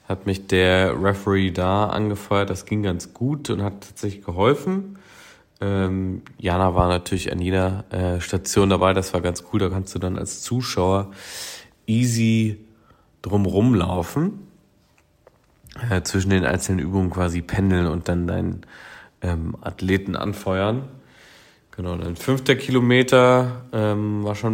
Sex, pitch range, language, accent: male, 95-110 Hz, German, German